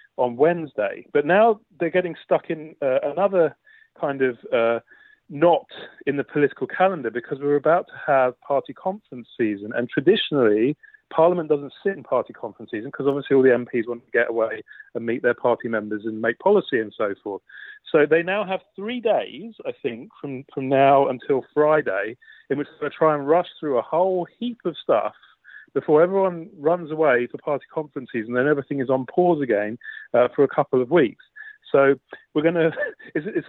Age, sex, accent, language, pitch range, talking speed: 30-49, male, British, English, 135-190 Hz, 190 wpm